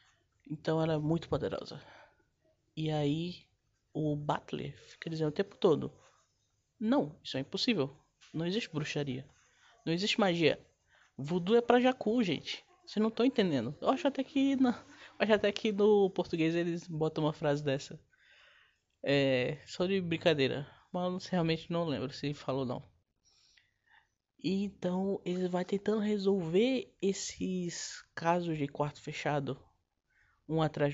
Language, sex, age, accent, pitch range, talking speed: Portuguese, male, 20-39, Brazilian, 140-195 Hz, 140 wpm